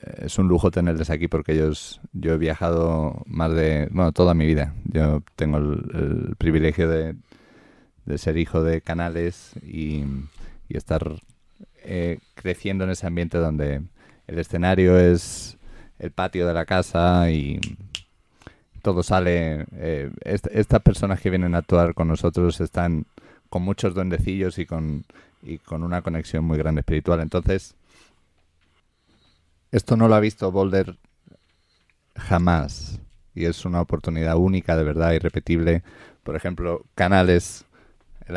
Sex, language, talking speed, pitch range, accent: male, English, 135 wpm, 80-90 Hz, Spanish